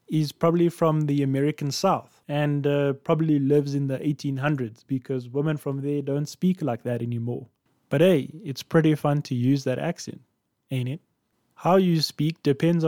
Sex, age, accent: male, 20-39, South African